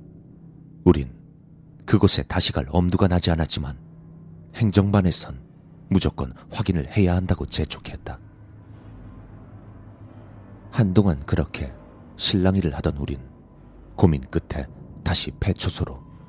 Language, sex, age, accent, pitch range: Korean, male, 30-49, native, 80-105 Hz